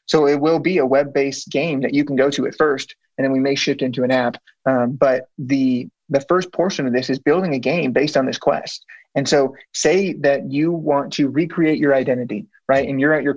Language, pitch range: English, 135-165 Hz